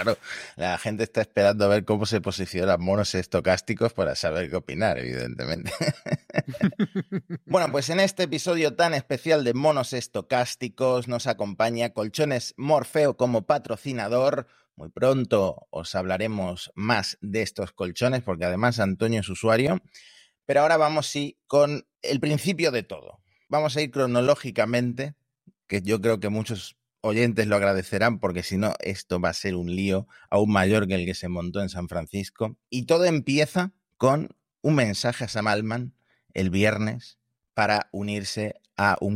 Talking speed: 155 wpm